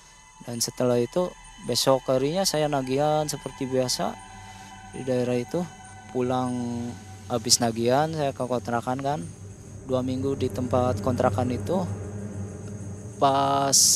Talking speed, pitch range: 110 wpm, 115-160 Hz